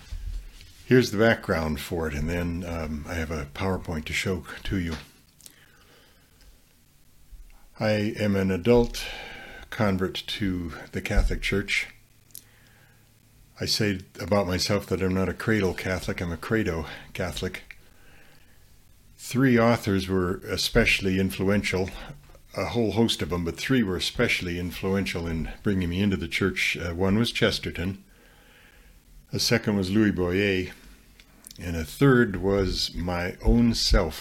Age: 60-79